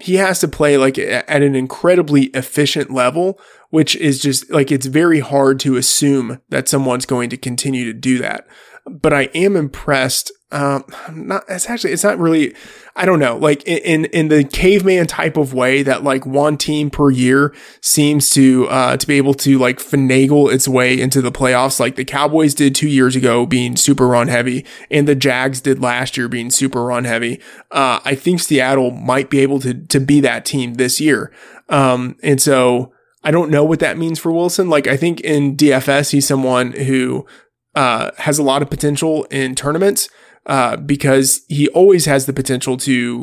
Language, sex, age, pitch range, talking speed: English, male, 20-39, 130-150 Hz, 195 wpm